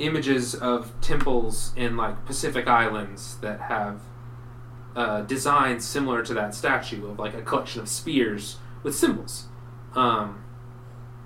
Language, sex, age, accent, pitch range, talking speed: English, male, 30-49, American, 115-125 Hz, 130 wpm